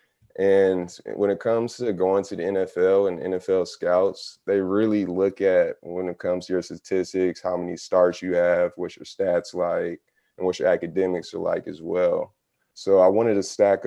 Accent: American